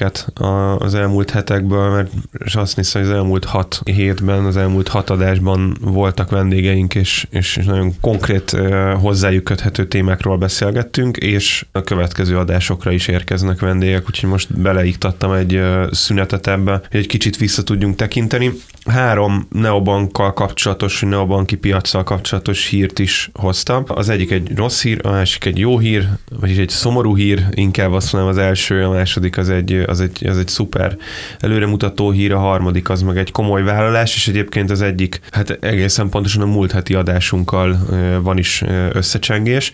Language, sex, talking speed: Hungarian, male, 155 wpm